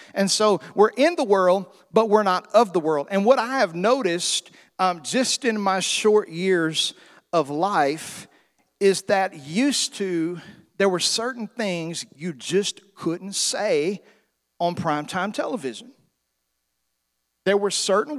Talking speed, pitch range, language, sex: 140 wpm, 180-220 Hz, English, male